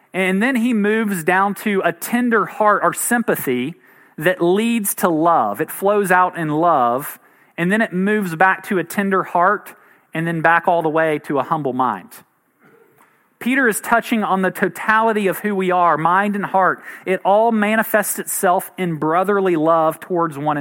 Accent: American